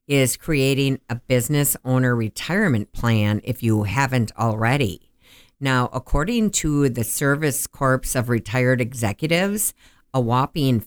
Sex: female